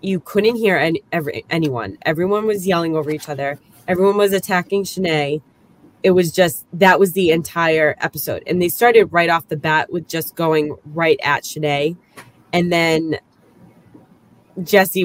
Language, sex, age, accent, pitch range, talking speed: English, female, 20-39, American, 150-185 Hz, 160 wpm